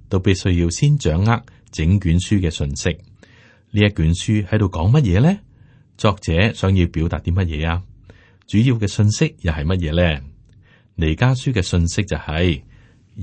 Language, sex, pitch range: Chinese, male, 85-115 Hz